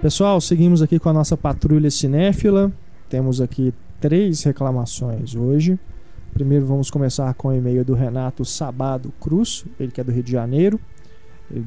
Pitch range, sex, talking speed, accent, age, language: 145-190 Hz, male, 160 wpm, Brazilian, 20-39, Portuguese